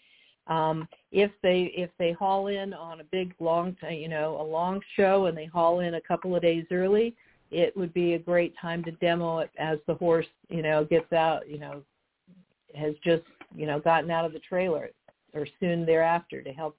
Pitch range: 155-185 Hz